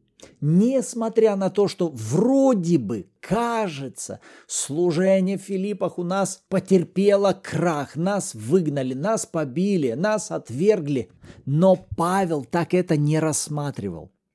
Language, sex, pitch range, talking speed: Russian, male, 160-215 Hz, 110 wpm